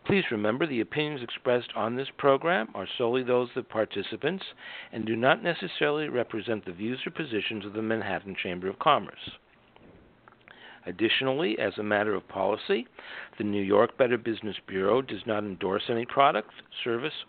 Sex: male